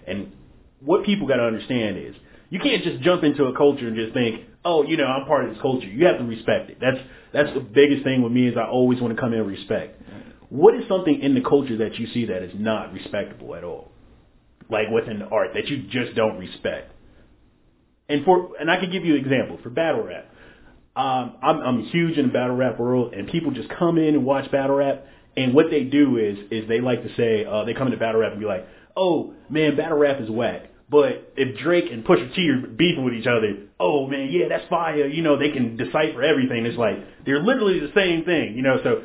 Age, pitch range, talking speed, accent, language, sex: 30-49, 115-150 Hz, 245 wpm, American, English, male